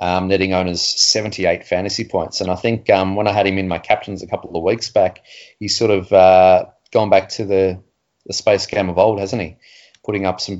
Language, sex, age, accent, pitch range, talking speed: English, male, 30-49, Australian, 90-105 Hz, 225 wpm